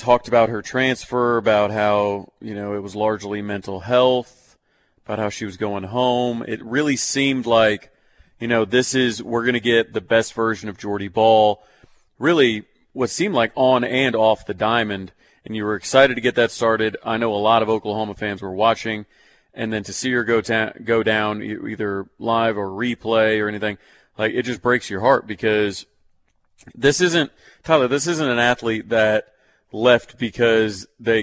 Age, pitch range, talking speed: 30-49, 105-125 Hz, 185 wpm